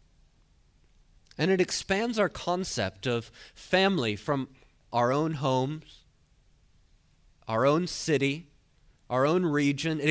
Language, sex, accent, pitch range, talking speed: English, male, American, 100-145 Hz, 105 wpm